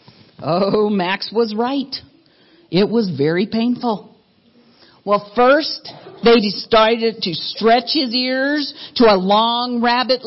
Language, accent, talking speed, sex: English, American, 115 wpm, female